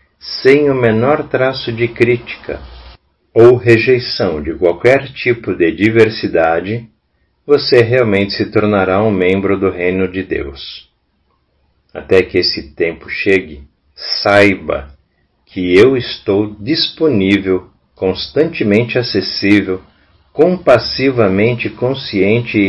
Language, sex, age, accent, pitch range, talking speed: Portuguese, male, 50-69, Brazilian, 90-120 Hz, 100 wpm